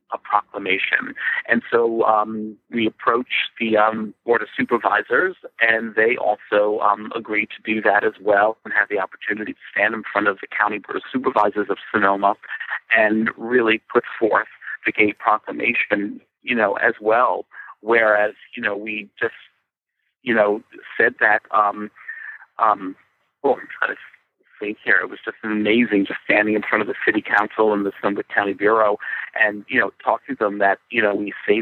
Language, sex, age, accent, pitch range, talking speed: English, male, 40-59, American, 105-120 Hz, 175 wpm